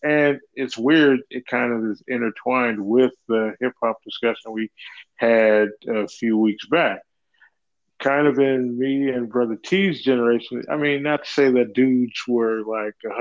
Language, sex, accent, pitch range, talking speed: English, male, American, 110-120 Hz, 165 wpm